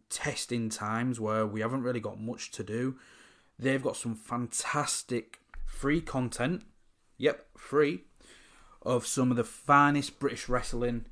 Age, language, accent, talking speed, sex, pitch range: 20-39, English, British, 135 wpm, male, 110-130 Hz